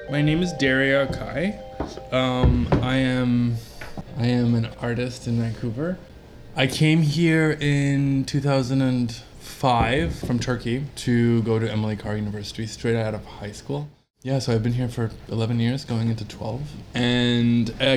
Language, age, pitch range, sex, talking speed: English, 20-39, 110-130 Hz, male, 150 wpm